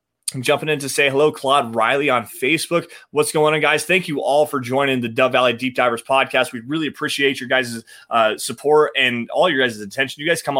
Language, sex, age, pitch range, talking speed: English, male, 20-39, 120-150 Hz, 225 wpm